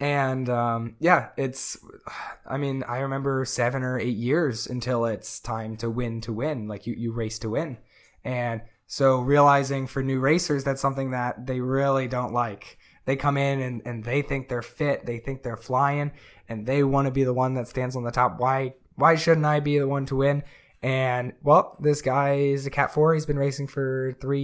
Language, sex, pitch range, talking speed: English, male, 120-140 Hz, 210 wpm